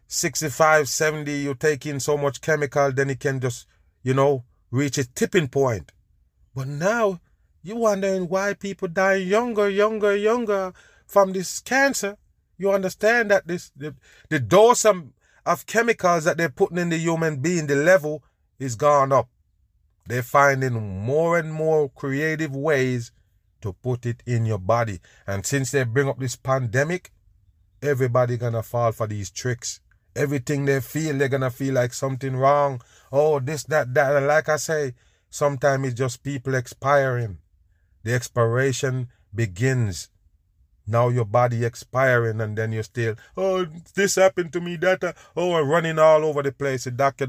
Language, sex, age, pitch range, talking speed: English, male, 30-49, 120-155 Hz, 160 wpm